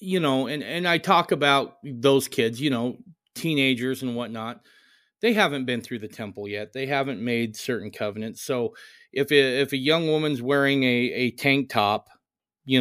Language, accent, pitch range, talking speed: English, American, 120-150 Hz, 185 wpm